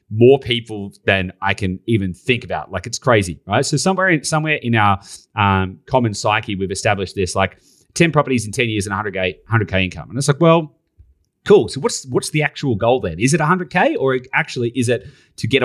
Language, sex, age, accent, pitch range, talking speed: English, male, 30-49, Australian, 100-130 Hz, 210 wpm